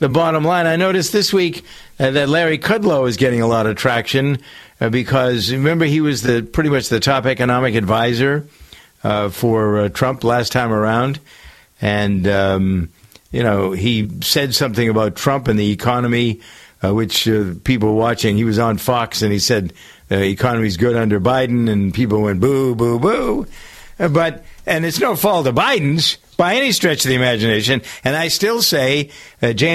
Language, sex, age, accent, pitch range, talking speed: English, male, 50-69, American, 110-150 Hz, 180 wpm